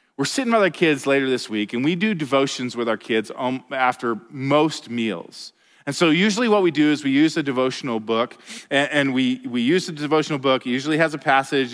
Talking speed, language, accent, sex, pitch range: 210 wpm, English, American, male, 125-165 Hz